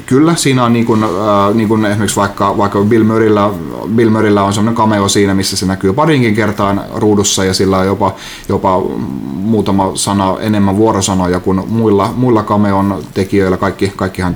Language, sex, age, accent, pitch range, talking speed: Finnish, male, 30-49, native, 95-115 Hz, 165 wpm